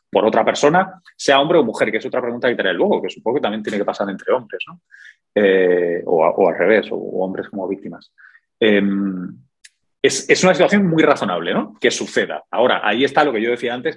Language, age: Spanish, 30-49